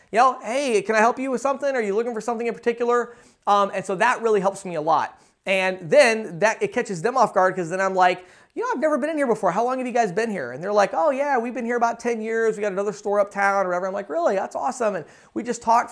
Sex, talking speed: male, 300 wpm